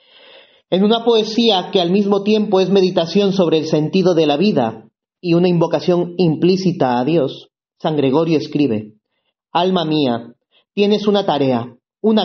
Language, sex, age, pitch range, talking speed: Spanish, male, 30-49, 140-200 Hz, 145 wpm